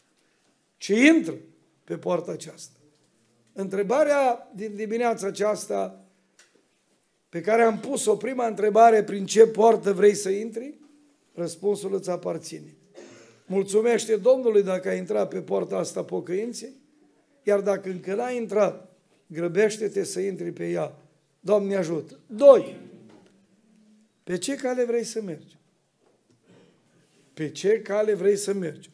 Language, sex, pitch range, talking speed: Romanian, male, 195-245 Hz, 120 wpm